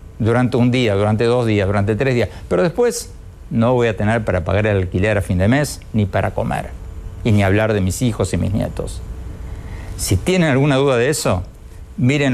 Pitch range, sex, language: 95-125 Hz, male, Spanish